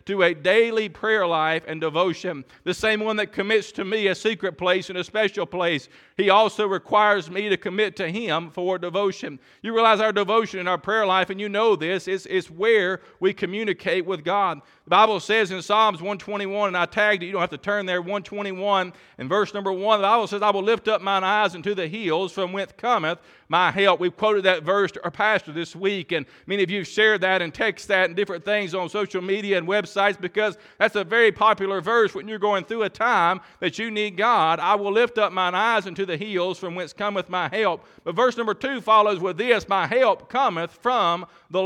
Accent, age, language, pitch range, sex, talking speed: American, 40-59, English, 185-215 Hz, male, 225 wpm